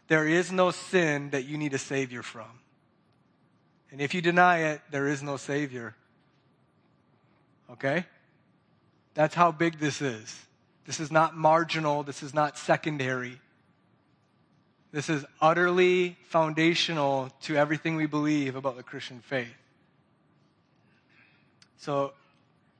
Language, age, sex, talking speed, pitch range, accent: English, 30-49, male, 120 wpm, 145-185 Hz, American